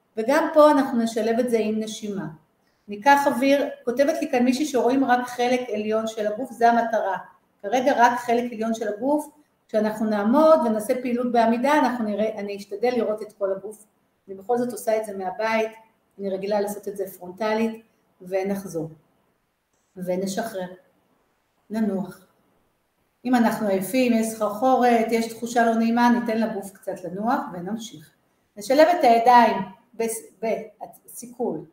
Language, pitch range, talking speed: Hebrew, 210-255 Hz, 145 wpm